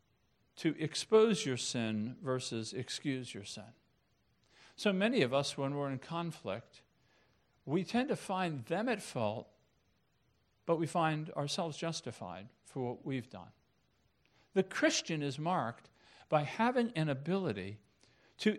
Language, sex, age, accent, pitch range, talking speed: English, male, 50-69, American, 135-225 Hz, 130 wpm